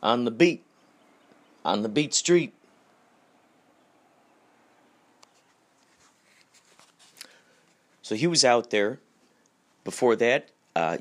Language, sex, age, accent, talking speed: English, male, 40-59, American, 80 wpm